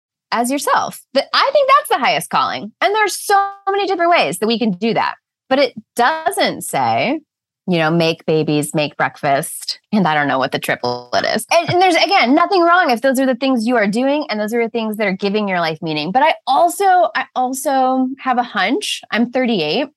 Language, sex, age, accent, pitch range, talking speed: English, female, 20-39, American, 185-275 Hz, 215 wpm